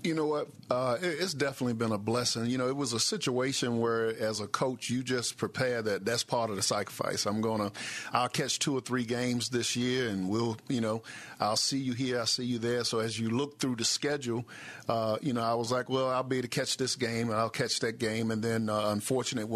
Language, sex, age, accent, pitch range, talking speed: English, male, 50-69, American, 115-130 Hz, 240 wpm